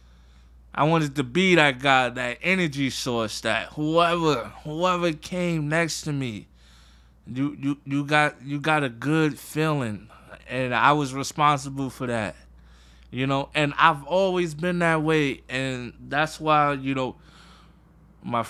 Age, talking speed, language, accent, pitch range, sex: 20-39, 145 wpm, English, American, 115-150 Hz, male